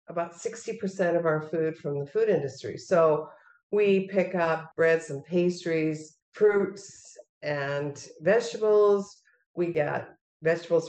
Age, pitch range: 50-69, 155-190 Hz